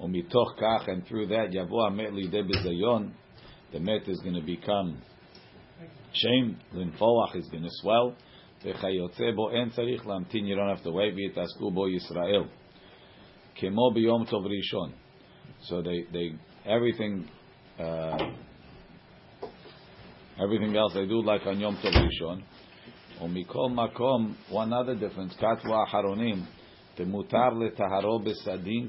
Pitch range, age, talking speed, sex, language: 95-115 Hz, 50-69, 110 wpm, male, English